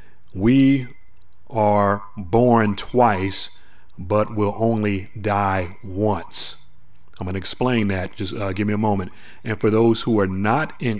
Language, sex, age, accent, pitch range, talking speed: English, male, 40-59, American, 95-115 Hz, 140 wpm